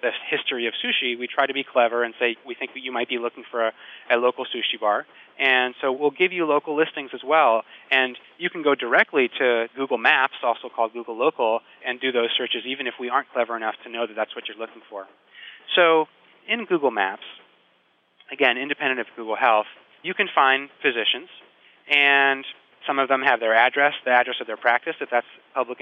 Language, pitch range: English, 120-140 Hz